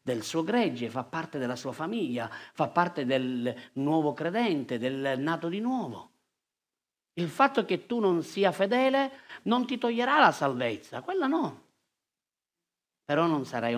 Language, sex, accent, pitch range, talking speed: Italian, male, native, 130-190 Hz, 150 wpm